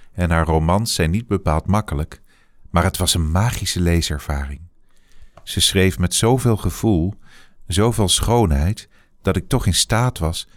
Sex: male